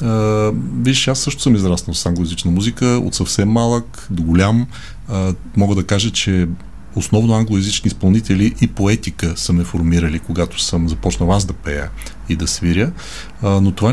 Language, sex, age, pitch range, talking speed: Bulgarian, male, 40-59, 85-115 Hz, 170 wpm